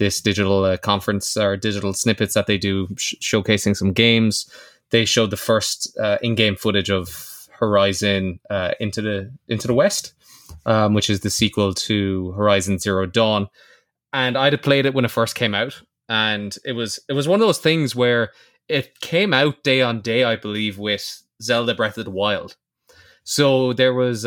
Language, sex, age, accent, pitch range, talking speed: English, male, 20-39, Irish, 100-120 Hz, 185 wpm